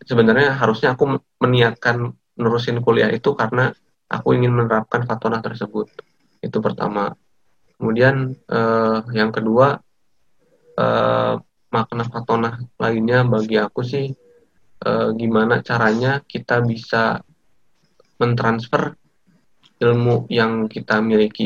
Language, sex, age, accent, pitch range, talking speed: Indonesian, male, 20-39, native, 110-130 Hz, 100 wpm